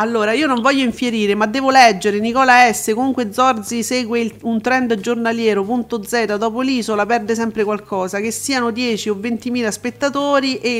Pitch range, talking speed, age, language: 210-255 Hz, 165 wpm, 40-59, Italian